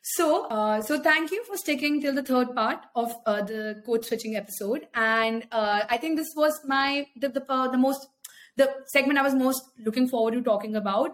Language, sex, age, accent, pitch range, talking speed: English, female, 20-39, Indian, 240-305 Hz, 210 wpm